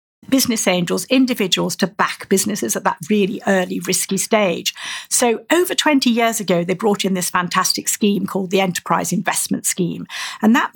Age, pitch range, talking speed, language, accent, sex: 50-69, 190-235 Hz, 165 wpm, English, British, female